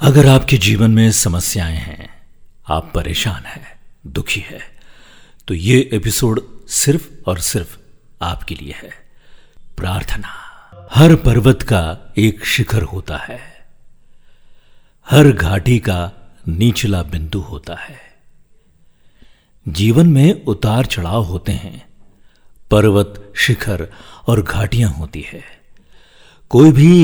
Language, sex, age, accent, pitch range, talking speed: Hindi, male, 50-69, native, 95-130 Hz, 110 wpm